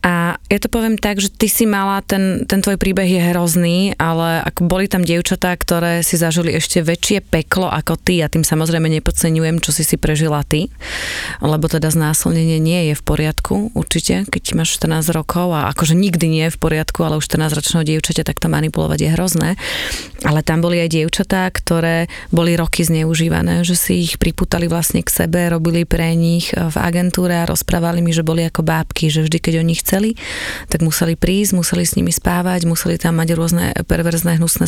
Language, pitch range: Slovak, 160-175 Hz